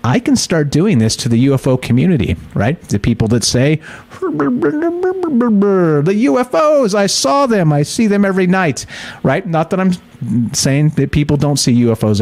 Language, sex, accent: English, male, American